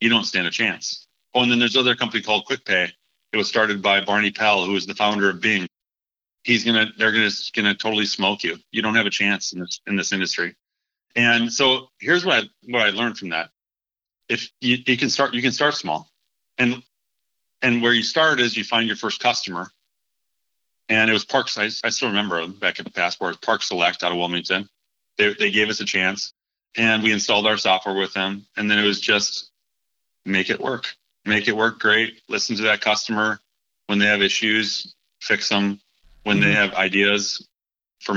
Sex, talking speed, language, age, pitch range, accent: male, 205 wpm, English, 40-59, 100-115 Hz, American